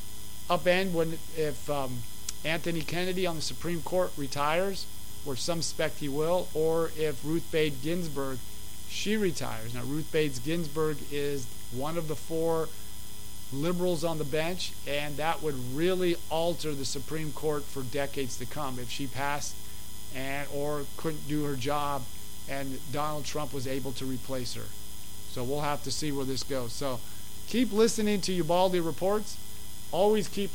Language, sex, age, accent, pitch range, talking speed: English, male, 40-59, American, 135-180 Hz, 160 wpm